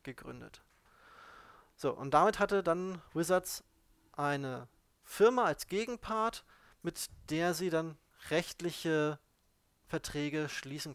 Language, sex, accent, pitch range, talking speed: German, male, German, 140-180 Hz, 100 wpm